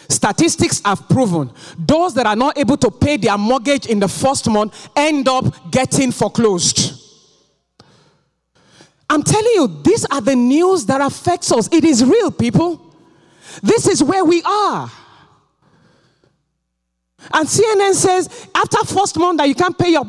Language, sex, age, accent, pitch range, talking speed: English, male, 40-59, Nigerian, 150-250 Hz, 150 wpm